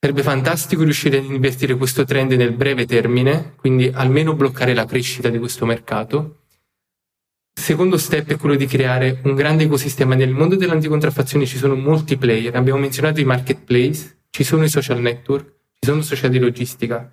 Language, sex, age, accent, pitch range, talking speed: Italian, male, 20-39, native, 125-145 Hz, 170 wpm